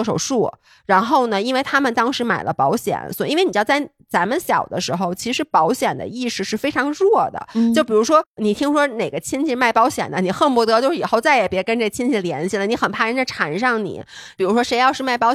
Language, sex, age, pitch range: Chinese, female, 20-39, 185-255 Hz